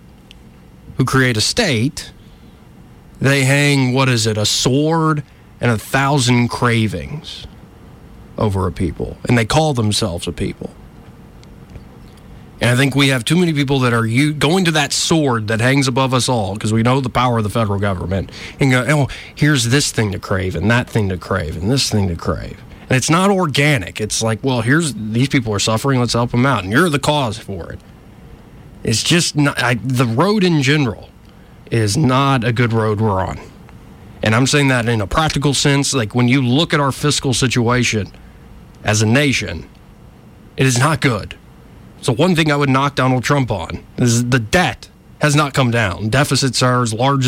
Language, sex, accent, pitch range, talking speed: English, male, American, 110-140 Hz, 190 wpm